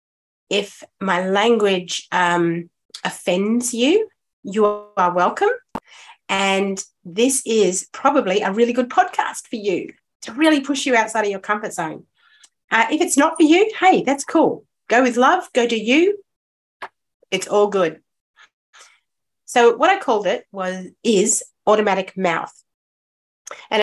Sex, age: female, 40-59